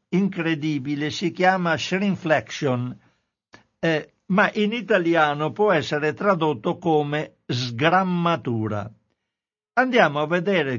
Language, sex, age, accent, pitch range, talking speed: Italian, male, 60-79, native, 140-200 Hz, 90 wpm